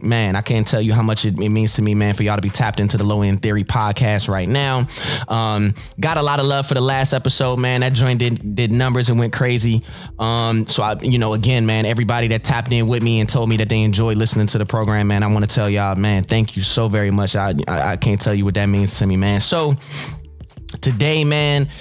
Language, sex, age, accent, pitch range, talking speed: English, male, 20-39, American, 105-125 Hz, 255 wpm